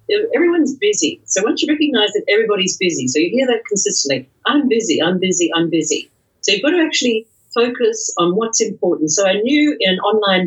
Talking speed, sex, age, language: 195 wpm, female, 50-69, English